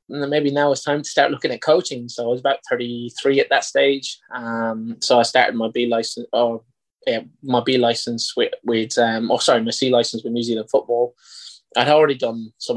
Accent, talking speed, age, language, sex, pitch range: British, 215 wpm, 20-39, English, male, 115-130 Hz